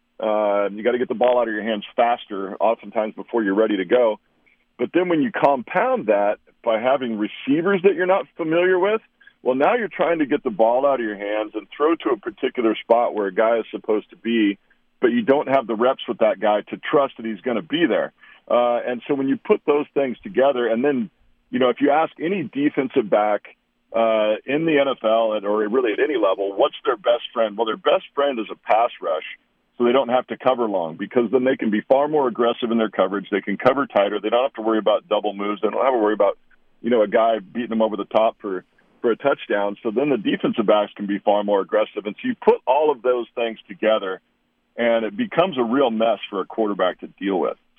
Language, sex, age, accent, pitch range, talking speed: English, male, 40-59, American, 110-145 Hz, 245 wpm